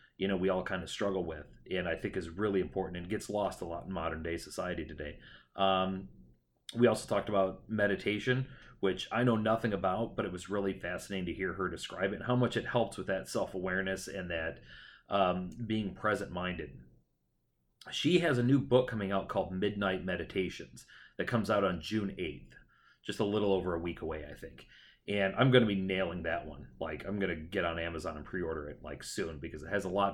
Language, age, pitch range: English, 30-49, 90-105 Hz